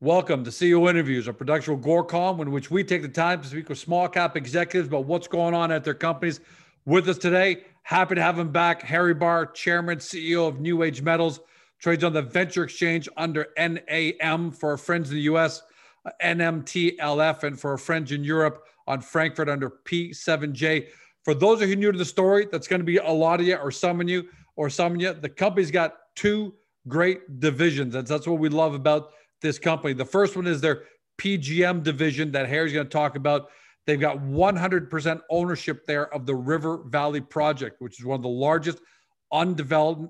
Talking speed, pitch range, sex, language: 200 wpm, 150-170 Hz, male, English